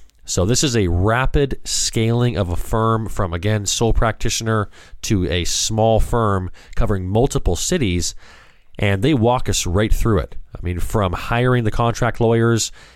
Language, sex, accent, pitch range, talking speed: English, male, American, 90-115 Hz, 155 wpm